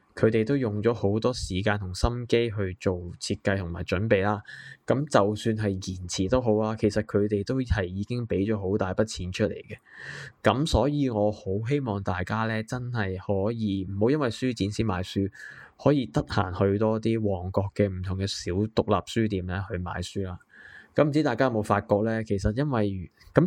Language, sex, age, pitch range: Chinese, male, 20-39, 95-115 Hz